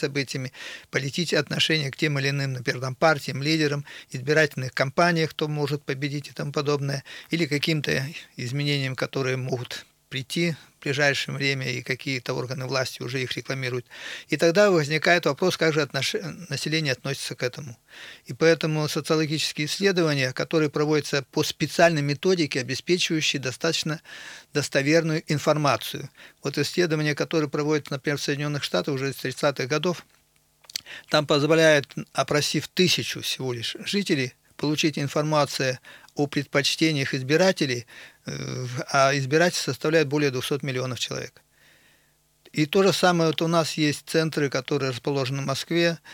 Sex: male